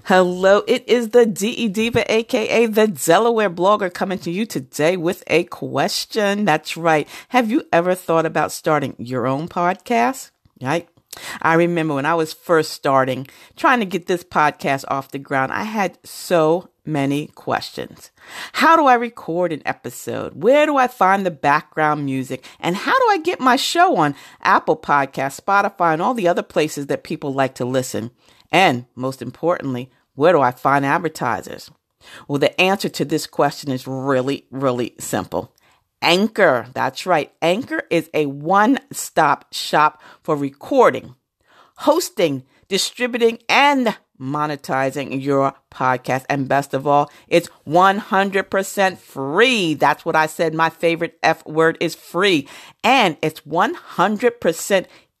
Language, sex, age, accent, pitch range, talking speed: English, female, 40-59, American, 140-205 Hz, 150 wpm